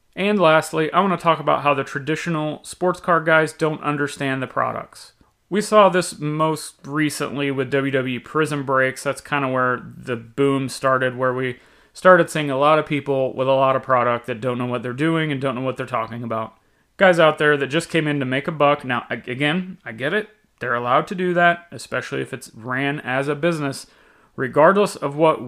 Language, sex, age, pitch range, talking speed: English, male, 30-49, 130-170 Hz, 210 wpm